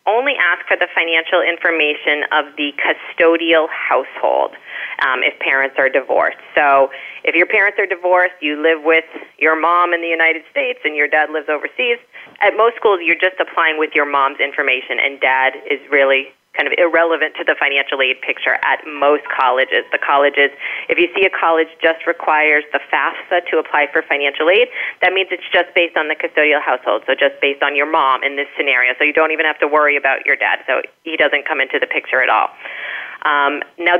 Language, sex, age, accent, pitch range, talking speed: English, female, 30-49, American, 145-175 Hz, 205 wpm